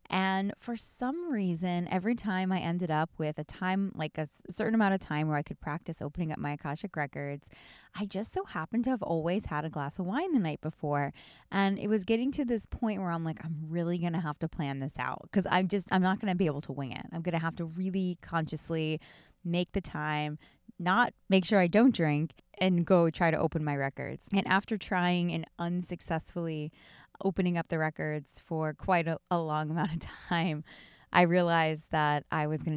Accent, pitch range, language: American, 155-185 Hz, English